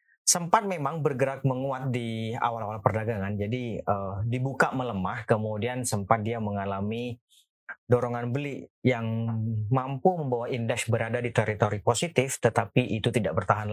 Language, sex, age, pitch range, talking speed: Indonesian, male, 30-49, 110-135 Hz, 125 wpm